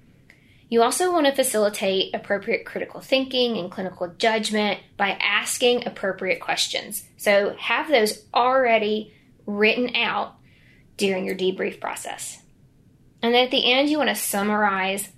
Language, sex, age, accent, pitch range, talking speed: English, female, 20-39, American, 190-245 Hz, 125 wpm